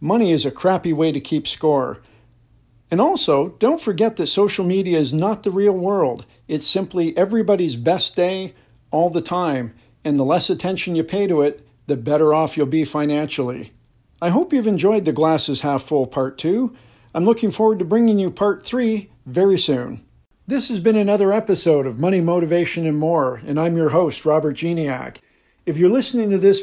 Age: 50-69